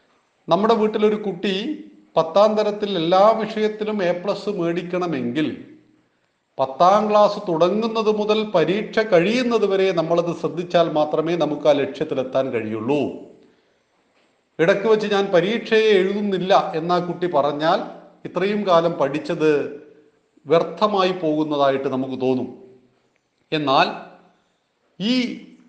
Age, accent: 40-59, native